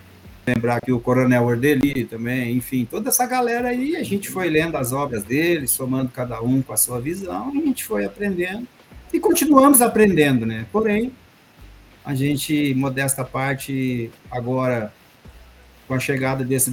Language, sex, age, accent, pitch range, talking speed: Portuguese, male, 50-69, Brazilian, 115-155 Hz, 155 wpm